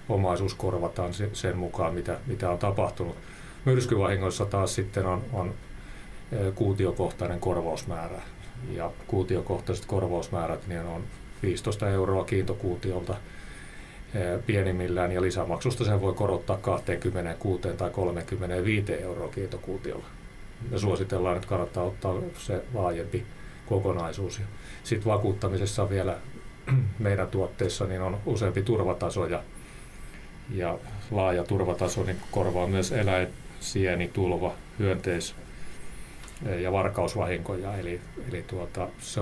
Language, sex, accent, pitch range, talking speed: Finnish, male, native, 90-100 Hz, 105 wpm